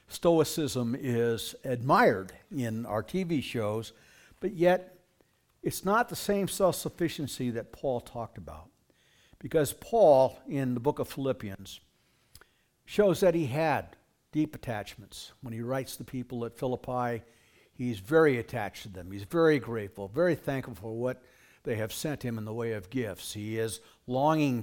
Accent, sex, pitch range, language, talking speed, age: American, male, 120-160 Hz, English, 150 wpm, 60-79